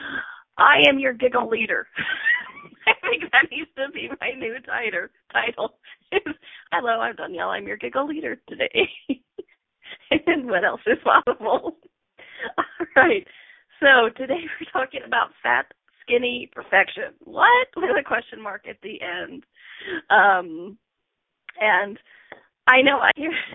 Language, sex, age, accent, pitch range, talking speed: English, female, 30-49, American, 230-375 Hz, 135 wpm